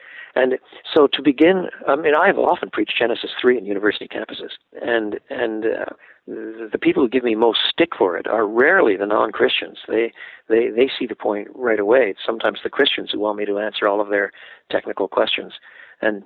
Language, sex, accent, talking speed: English, male, American, 195 wpm